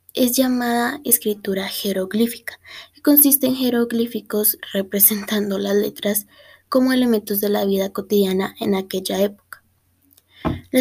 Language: Spanish